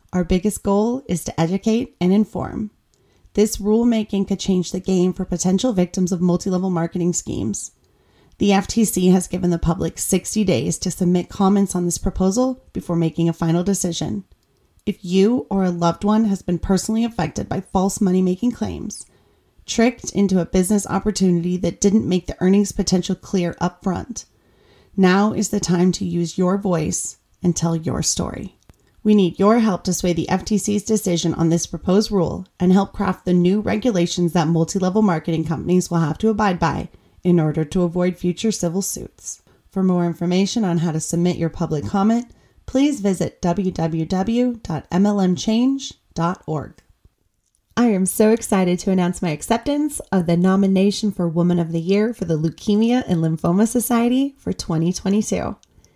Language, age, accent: English, 30-49, American